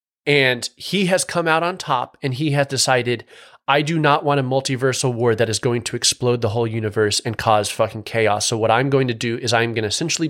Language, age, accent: English, 30-49, American